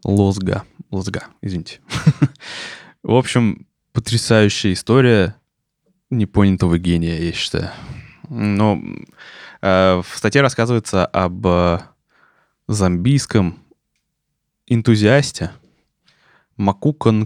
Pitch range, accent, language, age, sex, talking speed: 100-120 Hz, native, Russian, 20-39, male, 75 wpm